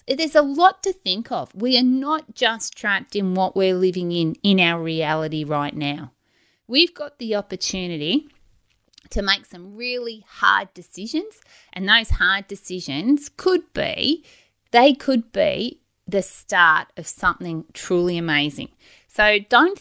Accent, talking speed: Australian, 145 wpm